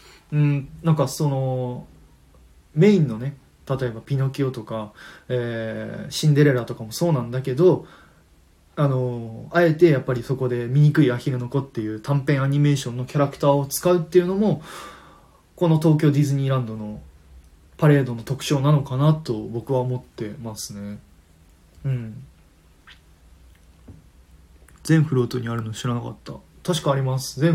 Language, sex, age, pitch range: Japanese, male, 20-39, 105-140 Hz